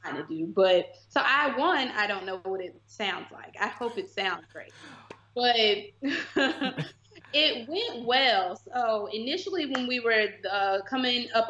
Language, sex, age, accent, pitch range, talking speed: English, female, 20-39, American, 185-230 Hz, 165 wpm